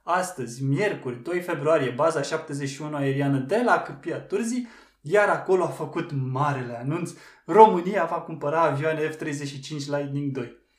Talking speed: 135 wpm